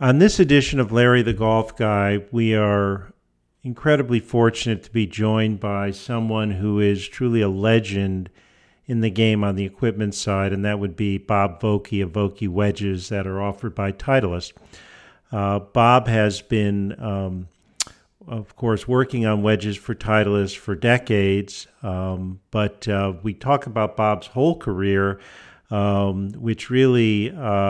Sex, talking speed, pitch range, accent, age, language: male, 150 wpm, 100-120 Hz, American, 50-69, English